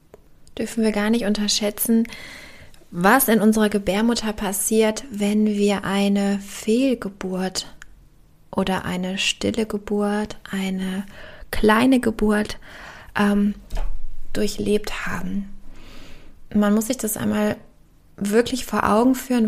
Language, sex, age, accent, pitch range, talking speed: German, female, 20-39, German, 200-230 Hz, 100 wpm